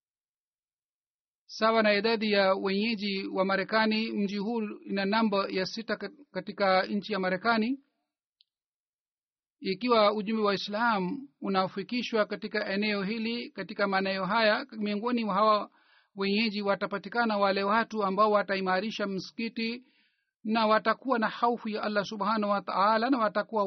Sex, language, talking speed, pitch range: male, Swahili, 125 wpm, 200-230 Hz